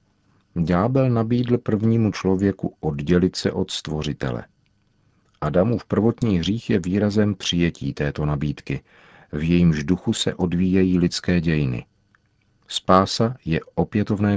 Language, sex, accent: Czech, male, native